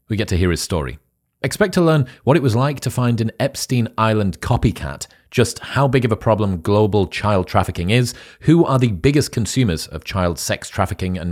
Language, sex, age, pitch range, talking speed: English, male, 30-49, 95-130 Hz, 205 wpm